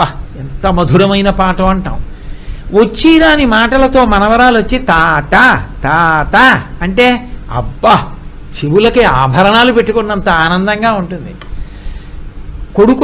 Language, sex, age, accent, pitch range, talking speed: Telugu, male, 60-79, native, 175-255 Hz, 85 wpm